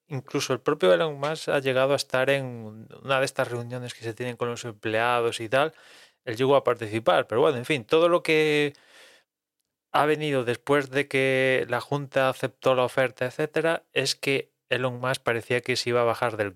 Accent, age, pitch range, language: Spanish, 20-39, 110-140 Hz, Spanish